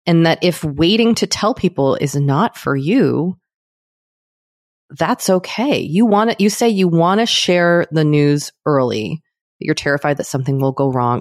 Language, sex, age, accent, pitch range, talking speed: English, female, 30-49, American, 130-160 Hz, 170 wpm